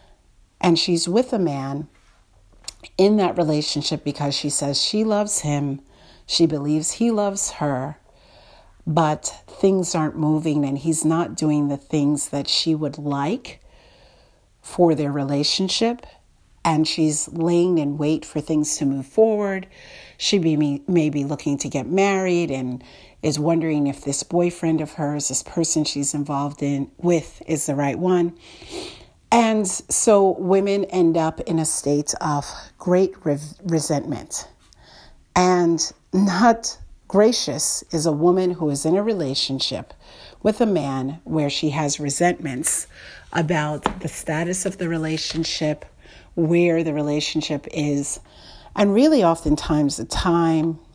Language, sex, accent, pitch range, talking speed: English, female, American, 145-180 Hz, 135 wpm